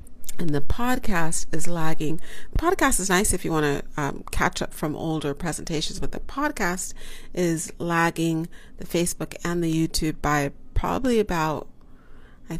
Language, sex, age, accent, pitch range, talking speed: English, female, 40-59, American, 140-170 Hz, 155 wpm